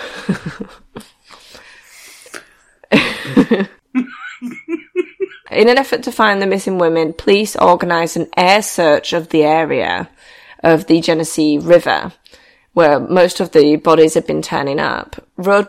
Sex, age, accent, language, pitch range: female, 20-39, British, English, 165-200 Hz